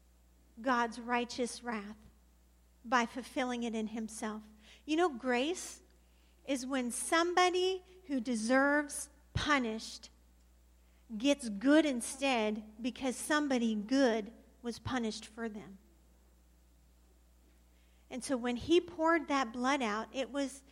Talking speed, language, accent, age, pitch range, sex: 105 wpm, English, American, 50-69, 215-285 Hz, female